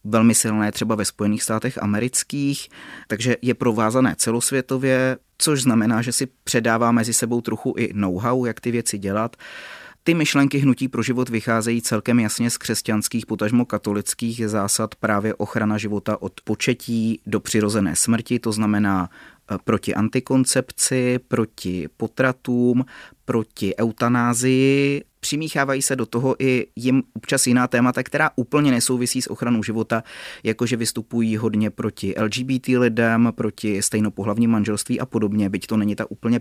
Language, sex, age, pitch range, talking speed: Czech, male, 30-49, 110-130 Hz, 140 wpm